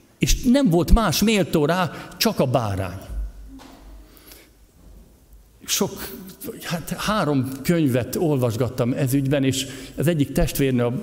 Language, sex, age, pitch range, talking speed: Hungarian, male, 60-79, 115-170 Hz, 110 wpm